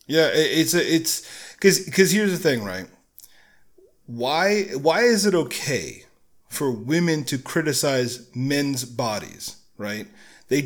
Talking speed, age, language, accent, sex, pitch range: 125 wpm, 30-49, English, American, male, 135-165 Hz